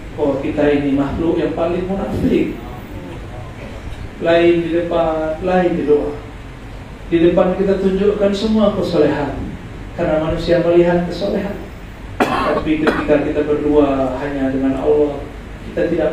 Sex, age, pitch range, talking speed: male, 40-59, 140-180 Hz, 120 wpm